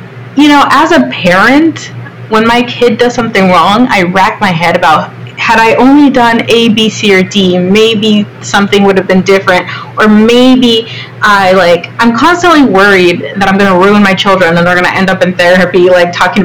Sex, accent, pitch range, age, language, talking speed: female, American, 180-225 Hz, 20-39, English, 200 wpm